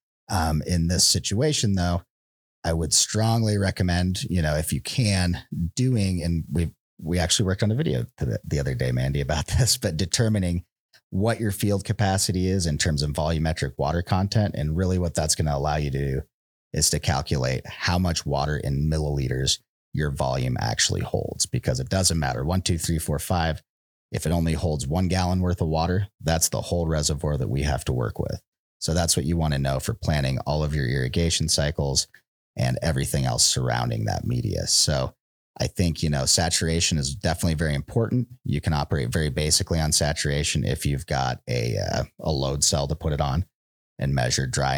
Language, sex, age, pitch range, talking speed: English, male, 30-49, 75-95 Hz, 195 wpm